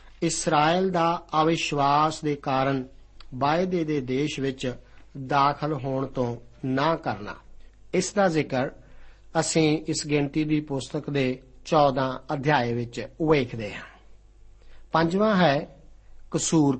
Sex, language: male, Punjabi